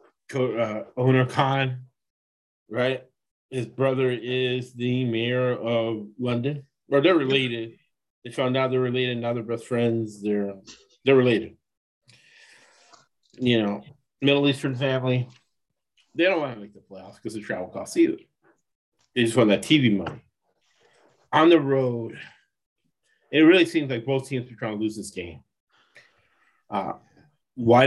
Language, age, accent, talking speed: English, 30-49, American, 140 wpm